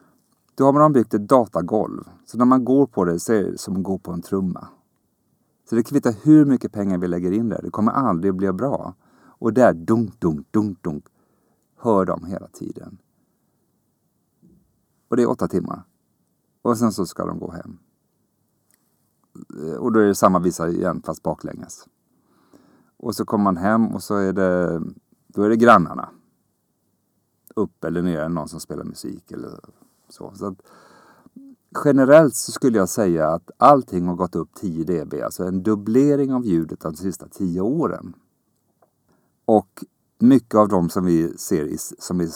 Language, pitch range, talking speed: Swedish, 90-125 Hz, 175 wpm